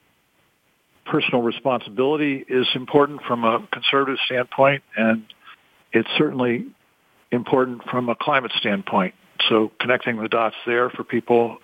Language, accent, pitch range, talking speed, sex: English, American, 115-130 Hz, 120 wpm, male